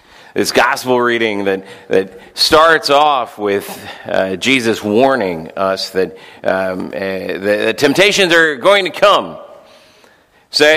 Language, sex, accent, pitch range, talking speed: English, male, American, 160-225 Hz, 130 wpm